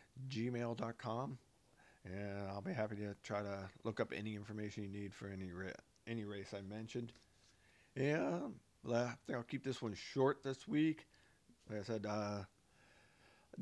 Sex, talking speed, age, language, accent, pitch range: male, 165 wpm, 50-69, English, American, 105-140 Hz